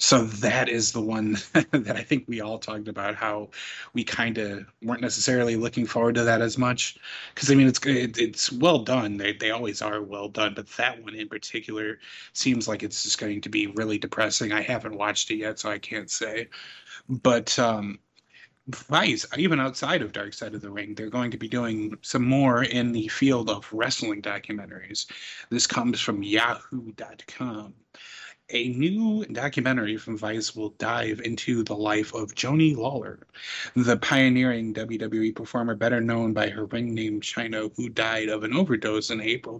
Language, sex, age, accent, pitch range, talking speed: English, male, 30-49, American, 110-125 Hz, 180 wpm